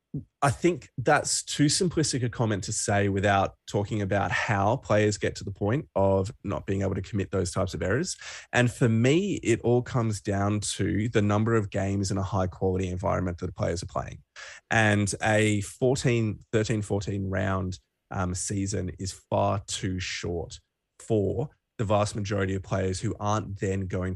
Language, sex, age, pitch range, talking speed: English, male, 20-39, 95-115 Hz, 180 wpm